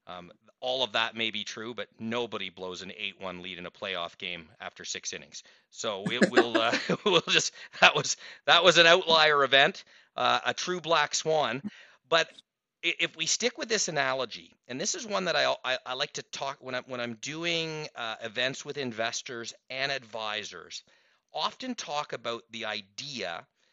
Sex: male